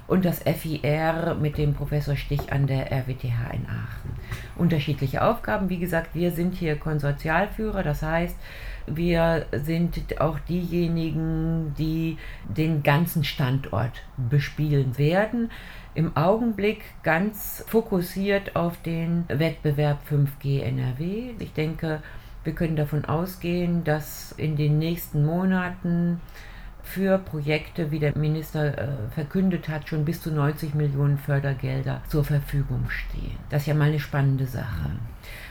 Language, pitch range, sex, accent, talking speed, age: German, 135-170 Hz, female, German, 125 wpm, 50-69